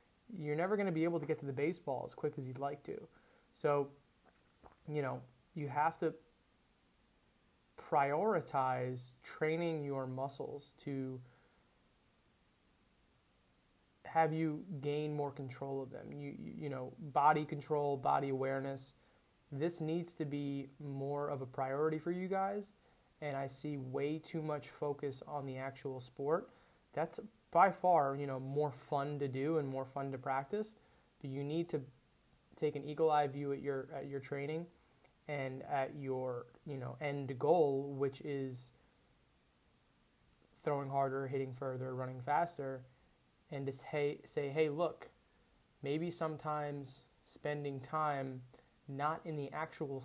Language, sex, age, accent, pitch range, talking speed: English, male, 20-39, American, 135-150 Hz, 145 wpm